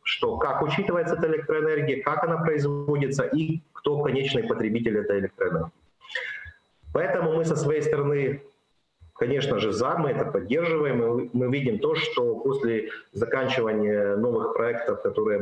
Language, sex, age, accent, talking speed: Ukrainian, male, 30-49, native, 135 wpm